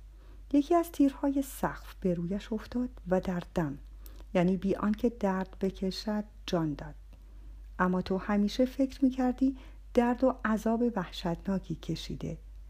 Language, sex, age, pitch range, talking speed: Persian, female, 50-69, 170-235 Hz, 125 wpm